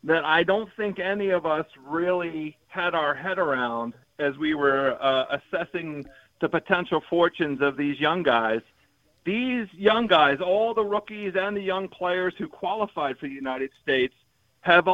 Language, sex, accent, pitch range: English, male, American, 145-200 Hz